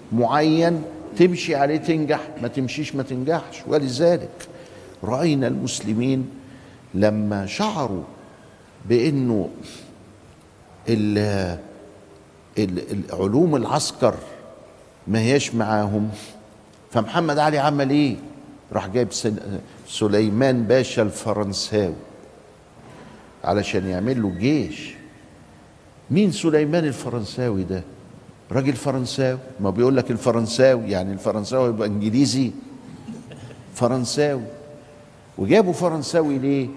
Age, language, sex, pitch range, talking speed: 60-79, Arabic, male, 110-145 Hz, 80 wpm